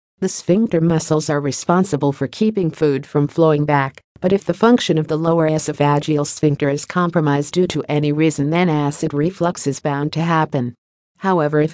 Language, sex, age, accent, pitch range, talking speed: English, female, 50-69, American, 145-175 Hz, 180 wpm